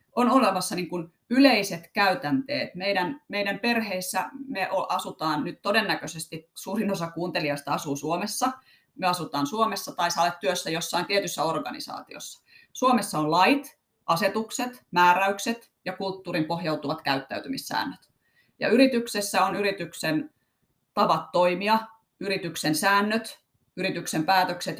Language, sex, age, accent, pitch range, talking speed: Finnish, female, 30-49, native, 160-225 Hz, 110 wpm